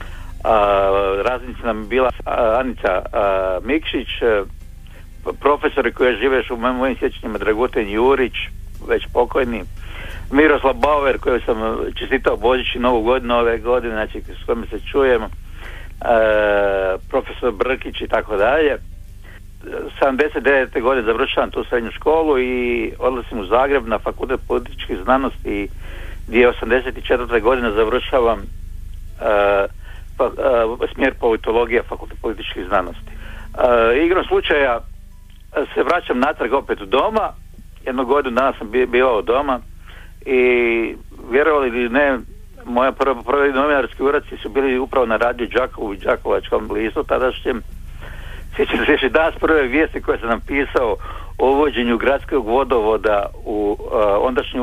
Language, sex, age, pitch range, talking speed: Croatian, male, 60-79, 90-130 Hz, 120 wpm